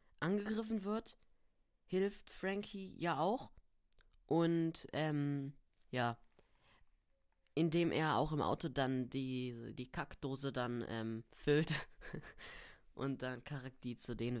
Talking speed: 115 wpm